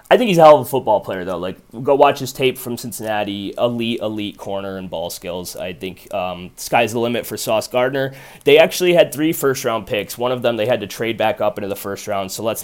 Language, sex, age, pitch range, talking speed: English, male, 20-39, 95-120 Hz, 250 wpm